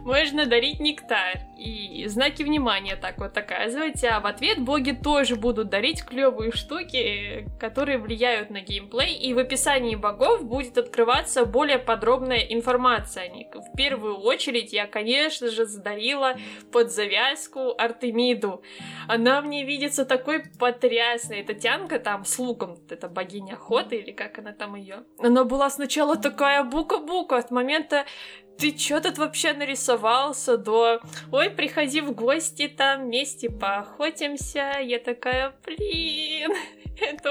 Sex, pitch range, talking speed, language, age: female, 230-280 Hz, 135 wpm, Russian, 20-39